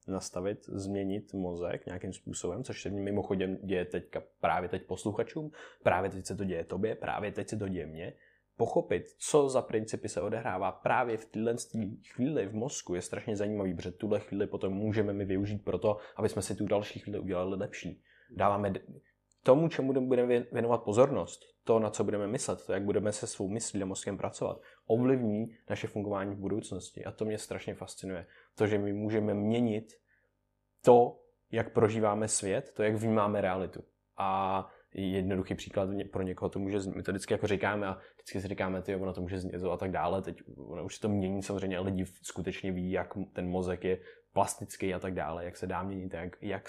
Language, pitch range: Czech, 95-110 Hz